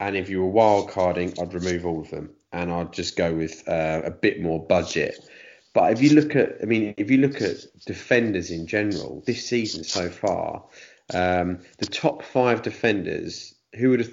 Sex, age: male, 30-49